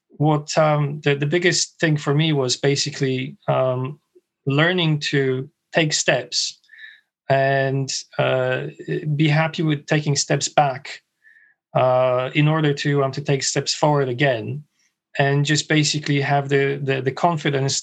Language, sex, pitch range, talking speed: English, male, 135-160 Hz, 140 wpm